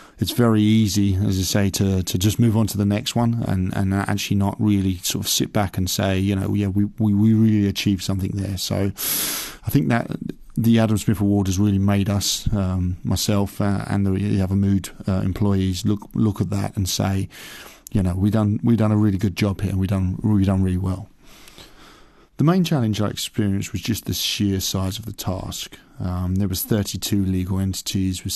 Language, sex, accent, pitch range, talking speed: English, male, British, 95-105 Hz, 215 wpm